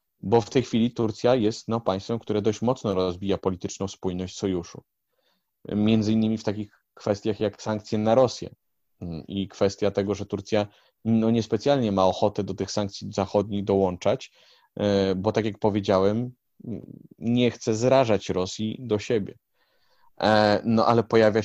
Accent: native